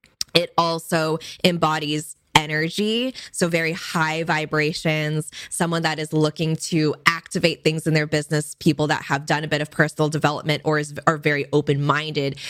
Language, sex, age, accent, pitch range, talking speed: English, female, 20-39, American, 145-165 Hz, 150 wpm